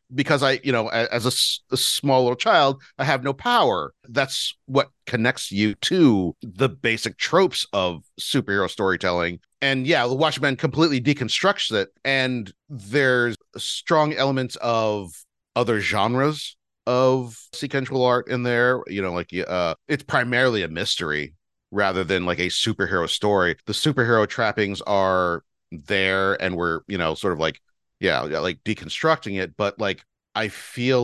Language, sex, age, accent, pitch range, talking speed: English, male, 40-59, American, 100-130 Hz, 150 wpm